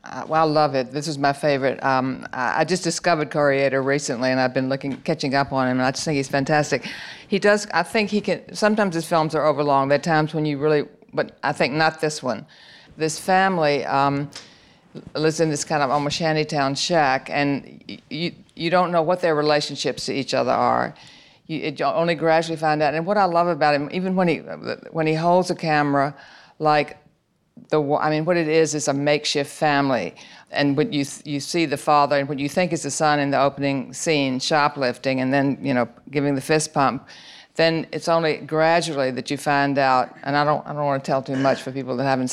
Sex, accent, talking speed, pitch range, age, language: female, American, 225 wpm, 140-160 Hz, 50-69, English